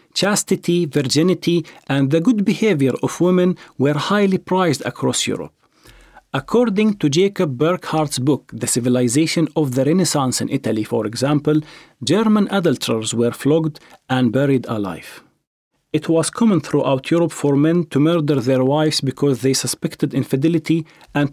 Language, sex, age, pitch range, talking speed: English, male, 40-59, 130-170 Hz, 140 wpm